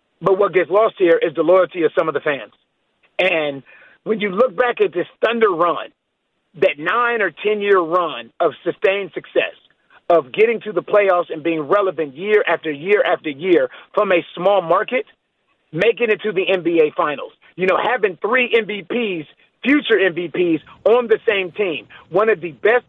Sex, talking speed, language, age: male, 180 wpm, English, 40-59